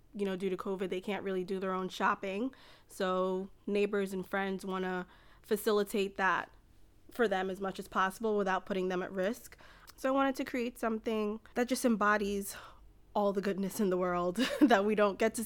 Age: 20-39